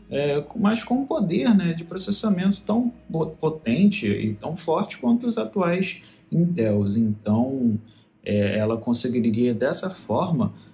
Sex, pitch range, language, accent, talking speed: male, 120-175 Hz, Portuguese, Brazilian, 130 wpm